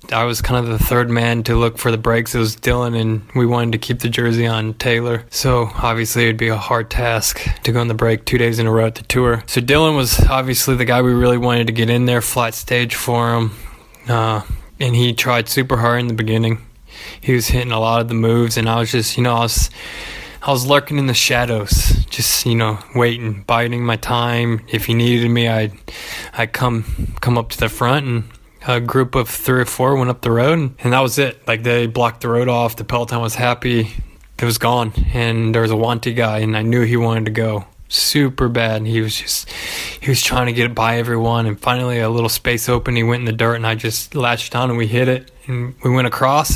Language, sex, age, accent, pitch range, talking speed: English, male, 20-39, American, 115-125 Hz, 245 wpm